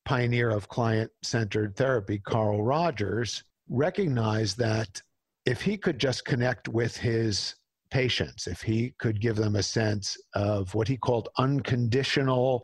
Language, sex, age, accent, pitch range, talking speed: English, male, 50-69, American, 110-135 Hz, 135 wpm